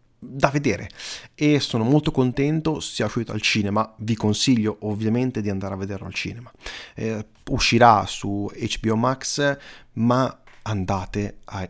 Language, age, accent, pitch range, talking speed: Italian, 30-49, native, 100-135 Hz, 140 wpm